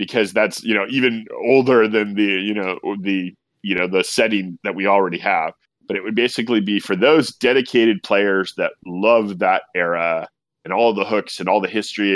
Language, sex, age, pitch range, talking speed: English, male, 30-49, 95-110 Hz, 200 wpm